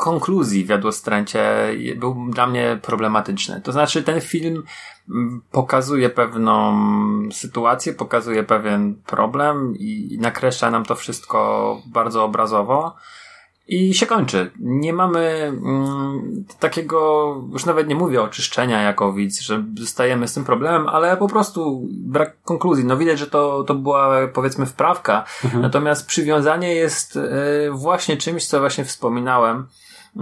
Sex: male